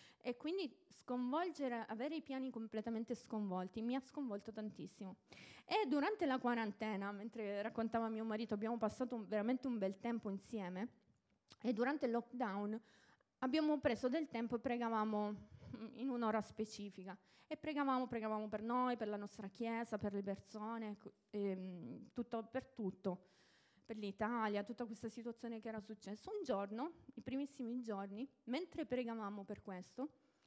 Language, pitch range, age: Italian, 215-270 Hz, 20-39